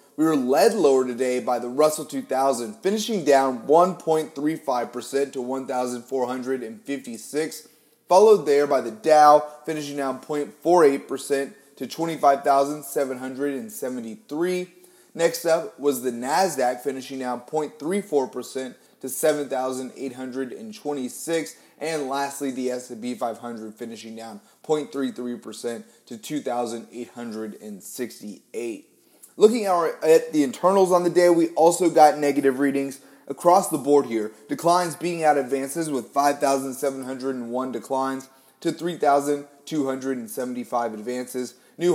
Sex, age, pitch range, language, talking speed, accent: male, 30-49, 130-165 Hz, English, 95 wpm, American